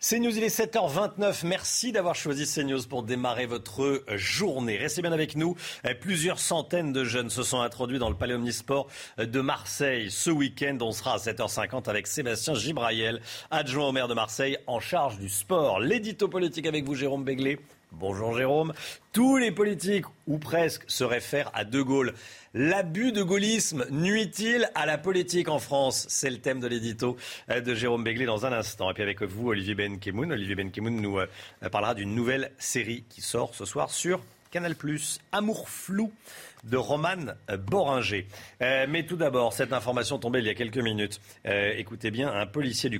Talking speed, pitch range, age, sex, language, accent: 185 wpm, 110-150 Hz, 40-59, male, French, French